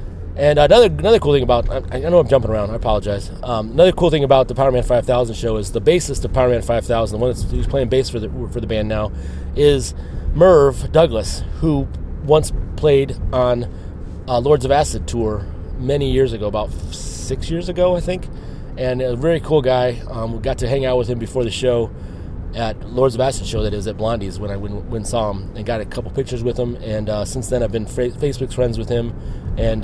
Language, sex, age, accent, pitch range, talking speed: English, male, 30-49, American, 105-135 Hz, 220 wpm